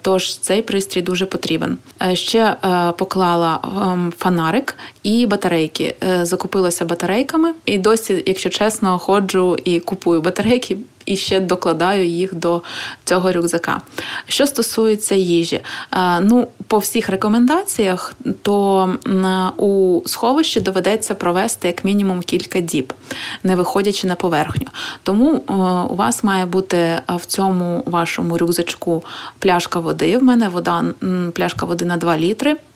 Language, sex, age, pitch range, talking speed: Ukrainian, female, 20-39, 180-210 Hz, 125 wpm